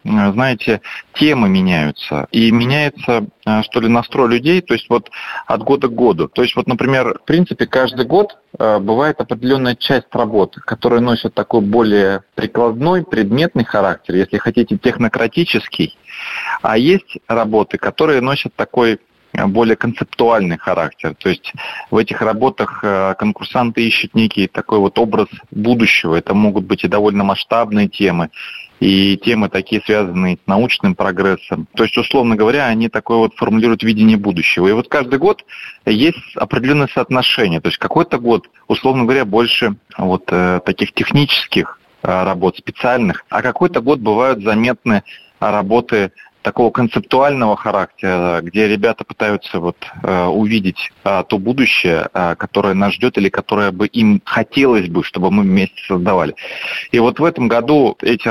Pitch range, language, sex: 100-125 Hz, Russian, male